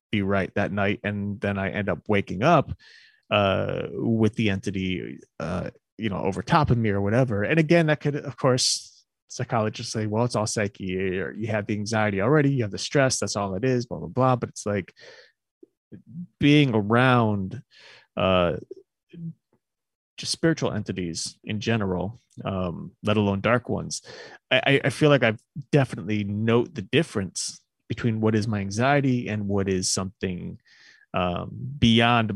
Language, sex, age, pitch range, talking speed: English, male, 30-49, 100-125 Hz, 165 wpm